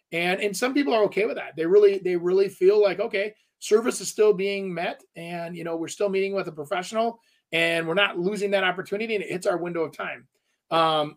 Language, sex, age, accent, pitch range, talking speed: English, male, 30-49, American, 175-225 Hz, 230 wpm